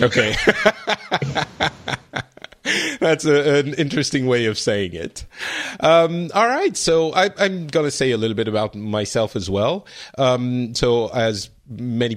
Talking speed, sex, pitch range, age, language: 135 wpm, male, 105-140 Hz, 30-49, English